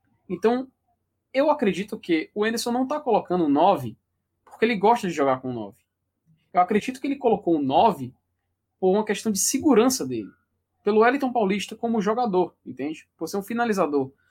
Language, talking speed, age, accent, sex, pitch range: Portuguese, 175 wpm, 20-39, Brazilian, male, 165-245 Hz